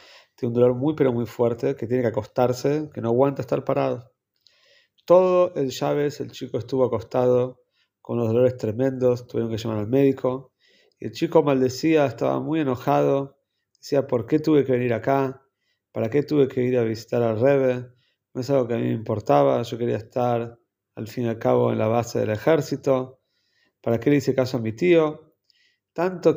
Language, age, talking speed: Spanish, 30-49, 190 wpm